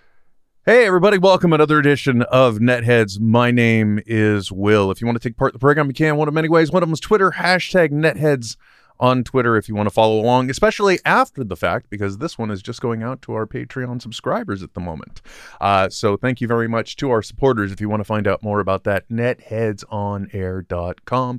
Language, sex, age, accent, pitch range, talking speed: English, male, 30-49, American, 105-140 Hz, 220 wpm